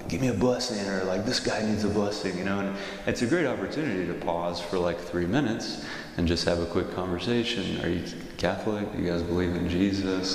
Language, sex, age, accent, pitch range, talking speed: English, male, 30-49, American, 85-100 Hz, 225 wpm